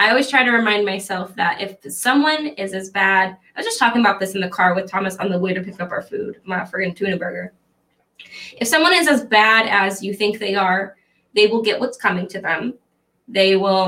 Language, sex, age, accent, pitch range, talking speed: English, female, 10-29, American, 195-245 Hz, 235 wpm